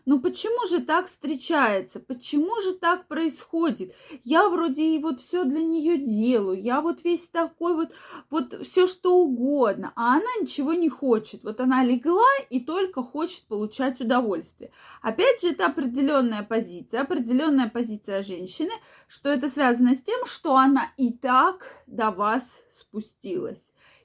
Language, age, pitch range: Russian, 20-39, 245-340 Hz